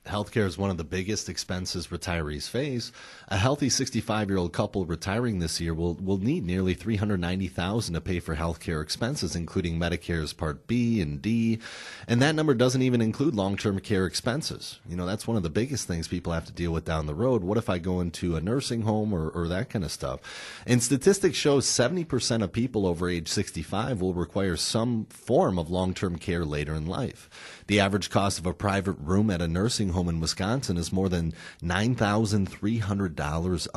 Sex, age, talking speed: male, 30-49, 200 wpm